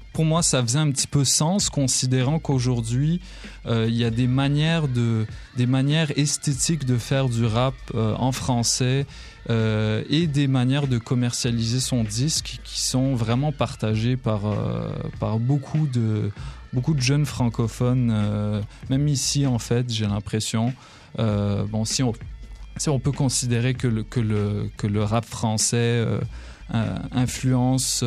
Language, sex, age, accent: French, male, 20-39, French